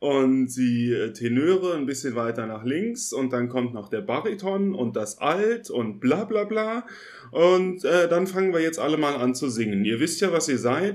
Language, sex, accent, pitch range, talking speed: German, male, German, 125-185 Hz, 210 wpm